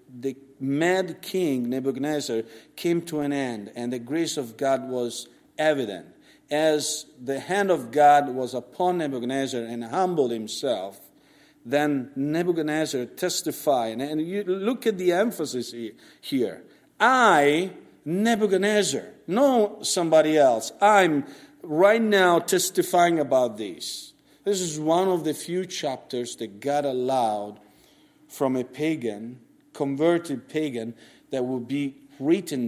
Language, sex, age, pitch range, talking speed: English, male, 50-69, 125-175 Hz, 120 wpm